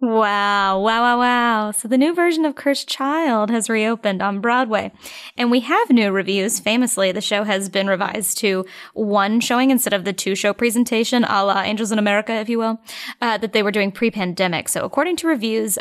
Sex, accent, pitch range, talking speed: female, American, 195-240 Hz, 195 wpm